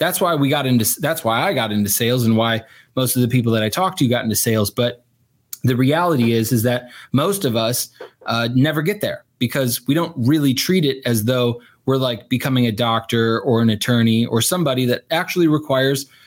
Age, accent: 20-39, American